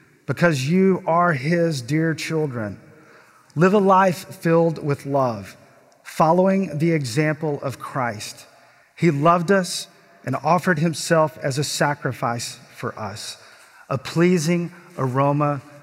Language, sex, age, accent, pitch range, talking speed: English, male, 40-59, American, 125-160 Hz, 120 wpm